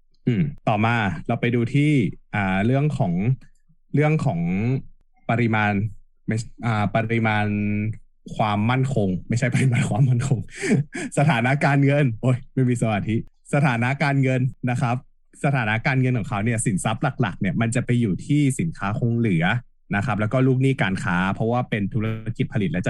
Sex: male